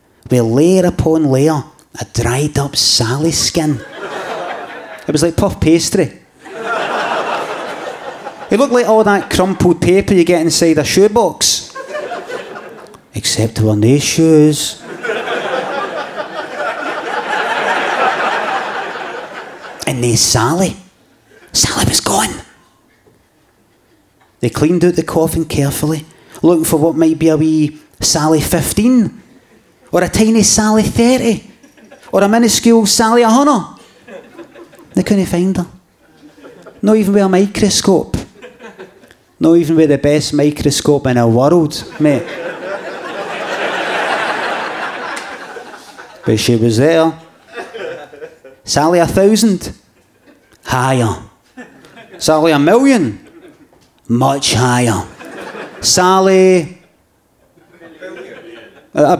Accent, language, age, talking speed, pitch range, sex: British, English, 30-49, 100 wpm, 140-200 Hz, male